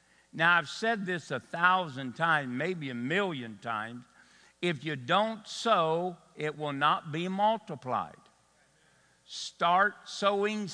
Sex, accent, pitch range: male, American, 140-200 Hz